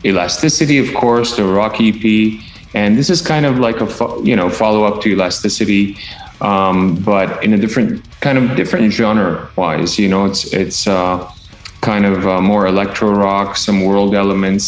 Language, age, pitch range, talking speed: English, 30-49, 95-115 Hz, 160 wpm